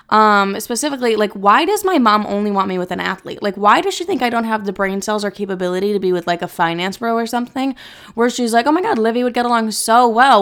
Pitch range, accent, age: 195-235 Hz, American, 20-39